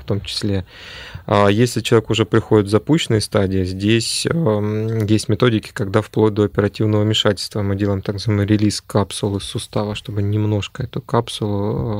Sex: male